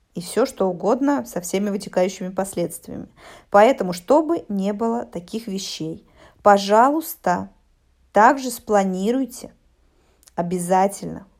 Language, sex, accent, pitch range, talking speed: Russian, female, native, 185-255 Hz, 95 wpm